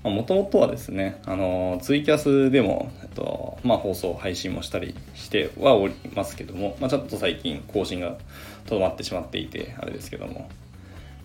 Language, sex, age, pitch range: Japanese, male, 20-39, 95-135 Hz